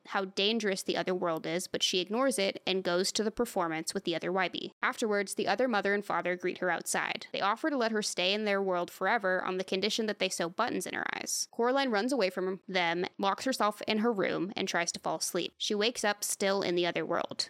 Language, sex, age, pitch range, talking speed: English, female, 20-39, 185-225 Hz, 245 wpm